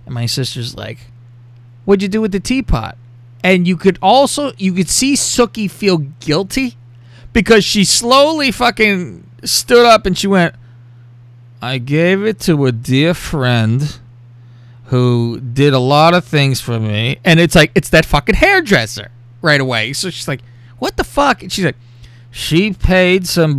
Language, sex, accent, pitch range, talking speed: English, male, American, 120-175 Hz, 165 wpm